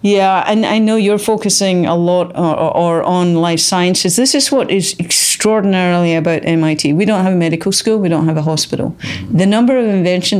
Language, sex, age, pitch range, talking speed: English, female, 40-59, 170-205 Hz, 200 wpm